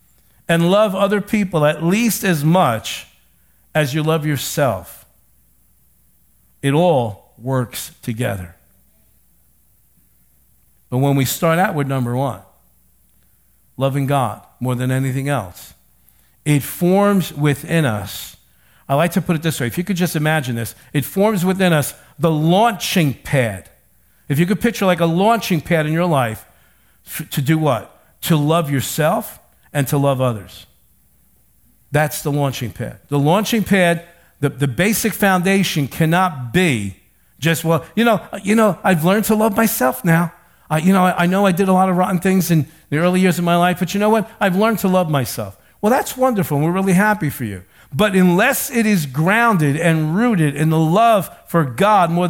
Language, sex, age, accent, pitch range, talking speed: English, male, 50-69, American, 130-185 Hz, 175 wpm